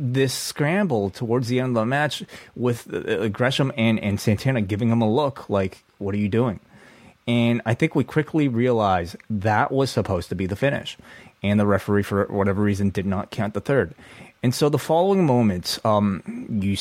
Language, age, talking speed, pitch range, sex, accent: English, 30-49, 190 wpm, 100-120 Hz, male, American